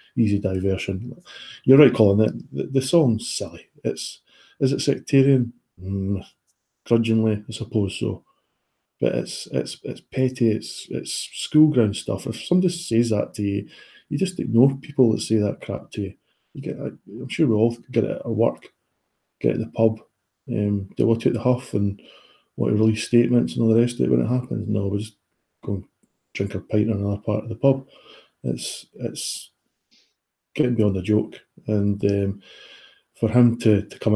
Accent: British